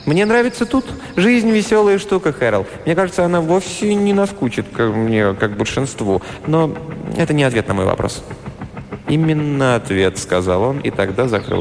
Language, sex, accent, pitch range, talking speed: Russian, male, native, 95-140 Hz, 165 wpm